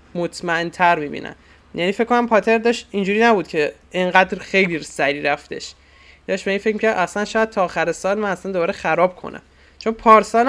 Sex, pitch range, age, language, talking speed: male, 155-200 Hz, 20-39, English, 190 wpm